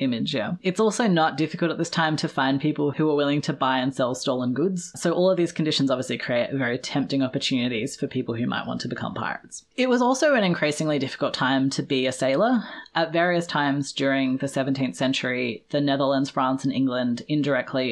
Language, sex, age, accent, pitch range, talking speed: English, female, 20-39, Australian, 130-150 Hz, 210 wpm